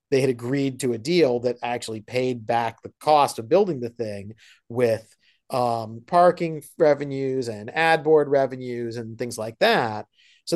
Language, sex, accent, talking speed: English, male, American, 165 wpm